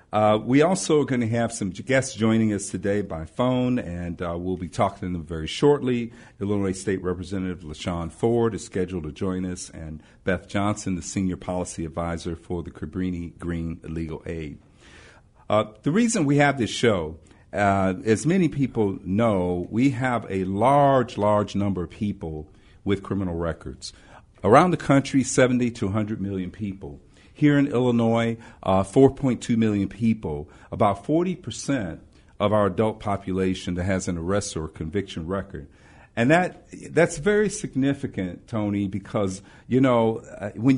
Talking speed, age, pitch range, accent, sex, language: 160 wpm, 50-69, 90-120 Hz, American, male, English